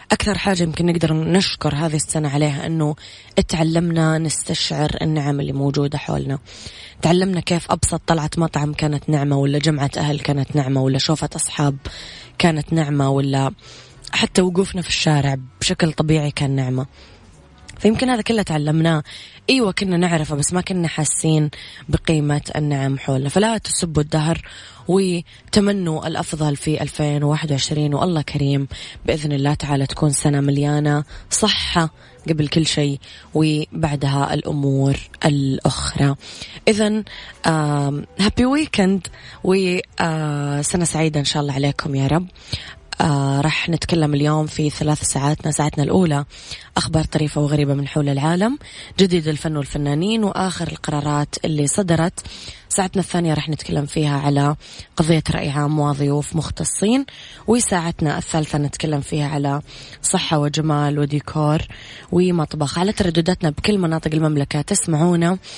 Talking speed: 125 wpm